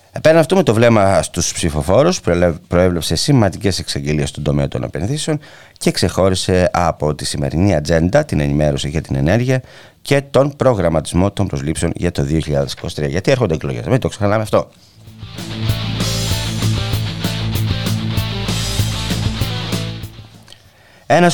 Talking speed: 115 wpm